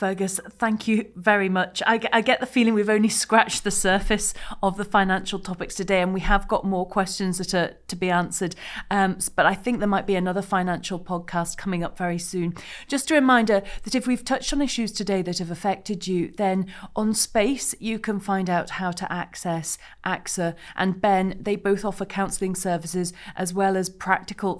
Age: 30-49